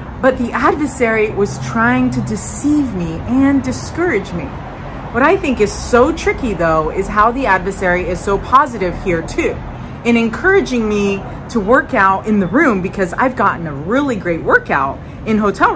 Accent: American